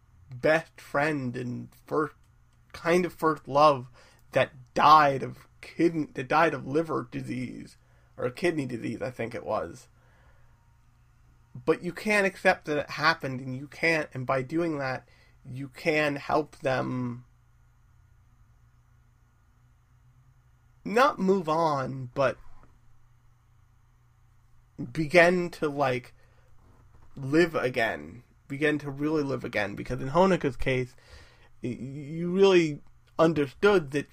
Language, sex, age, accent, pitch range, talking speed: English, male, 30-49, American, 120-160 Hz, 115 wpm